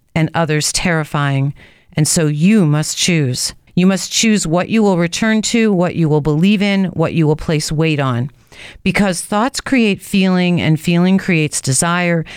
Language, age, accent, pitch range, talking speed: English, 40-59, American, 155-190 Hz, 170 wpm